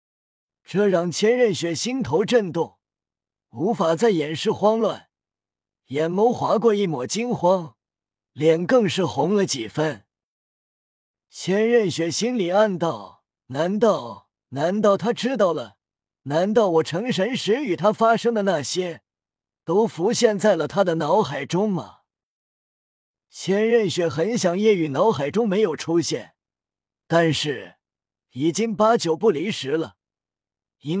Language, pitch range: Chinese, 145-215 Hz